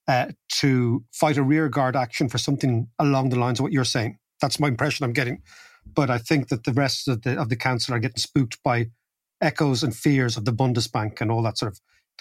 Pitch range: 125-160 Hz